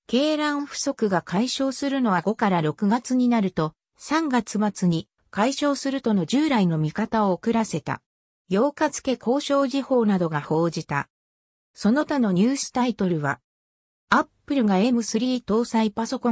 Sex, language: female, Japanese